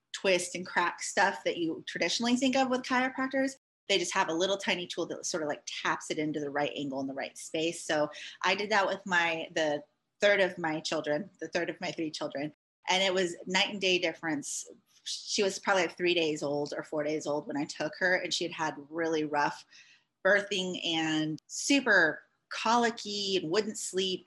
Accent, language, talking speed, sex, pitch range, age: American, English, 205 wpm, female, 165-220 Hz, 30-49